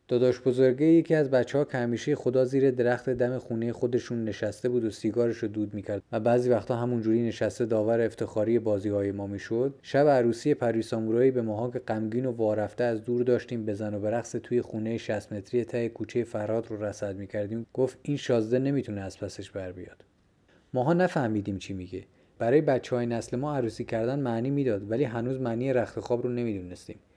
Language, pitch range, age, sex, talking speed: Persian, 105-130 Hz, 30-49, male, 180 wpm